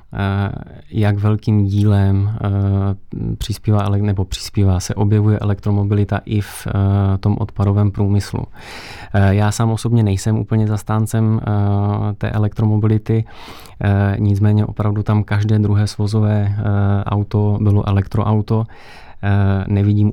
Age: 20-39